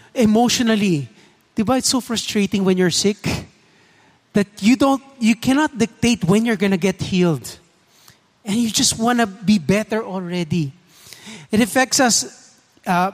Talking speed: 145 wpm